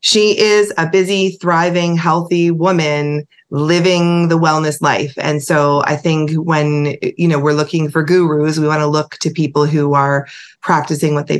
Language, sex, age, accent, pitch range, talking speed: English, female, 30-49, American, 145-170 Hz, 175 wpm